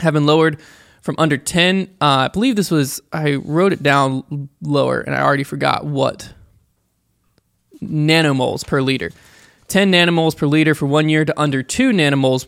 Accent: American